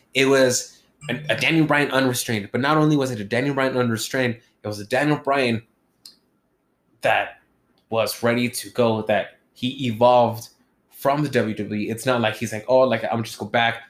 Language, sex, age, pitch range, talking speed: English, male, 20-39, 115-130 Hz, 180 wpm